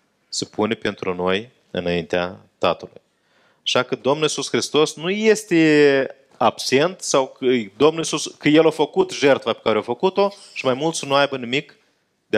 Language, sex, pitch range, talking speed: Romanian, male, 130-205 Hz, 170 wpm